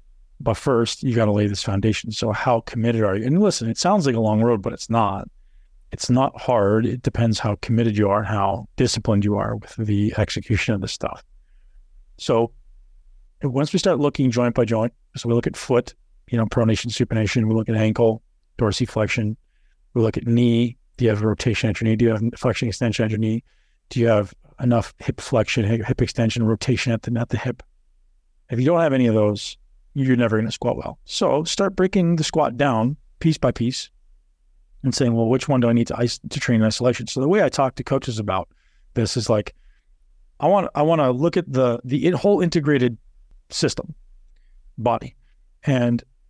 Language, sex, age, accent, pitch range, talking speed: English, male, 40-59, American, 110-130 Hz, 205 wpm